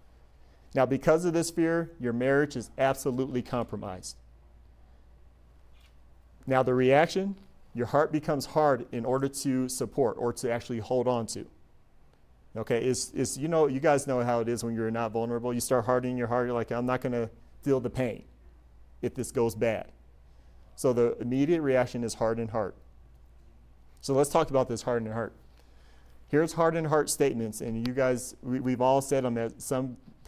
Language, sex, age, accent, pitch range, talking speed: English, male, 30-49, American, 90-140 Hz, 170 wpm